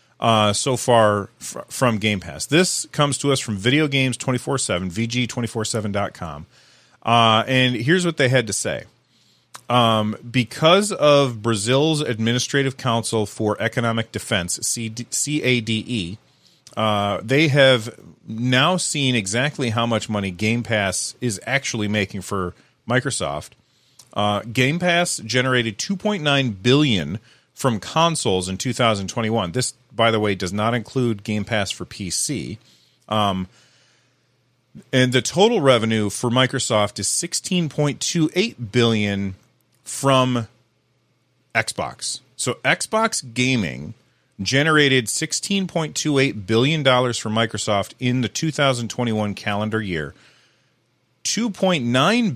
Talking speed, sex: 110 wpm, male